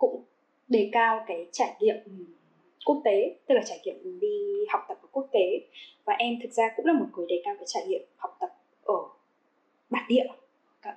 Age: 10-29